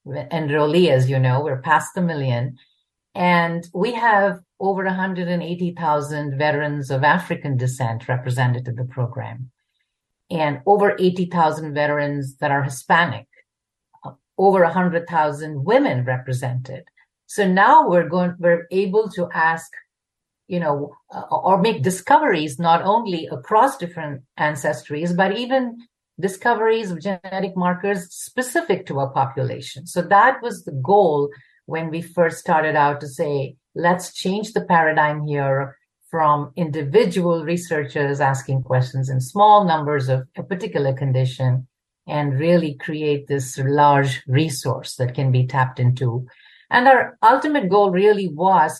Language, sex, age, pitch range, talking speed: English, female, 50-69, 140-185 Hz, 130 wpm